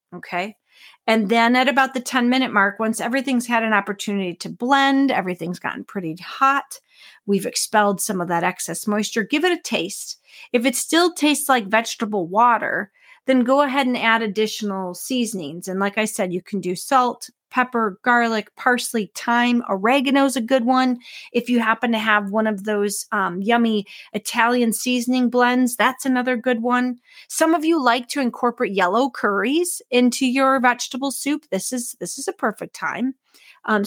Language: English